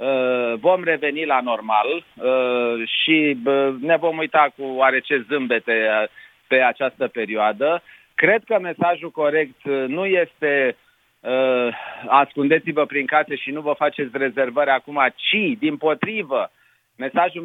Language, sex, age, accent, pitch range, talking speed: Romanian, male, 40-59, native, 135-175 Hz, 115 wpm